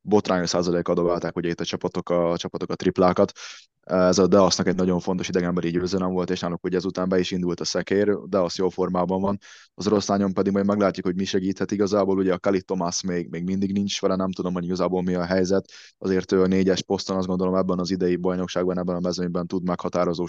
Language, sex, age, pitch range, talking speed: Hungarian, male, 20-39, 90-95 Hz, 225 wpm